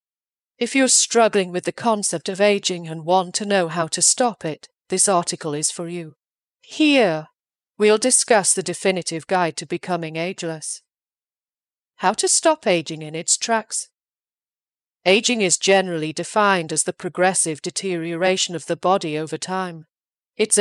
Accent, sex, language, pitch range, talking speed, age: British, female, English, 165-205 Hz, 150 wpm, 40-59